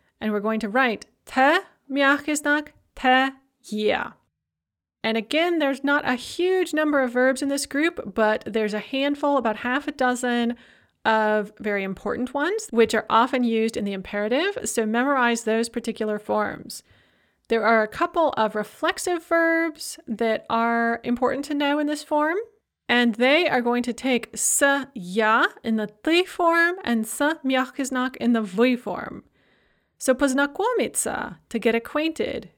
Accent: American